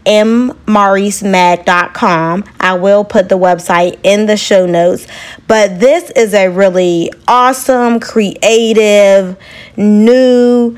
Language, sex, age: English, female, 20-39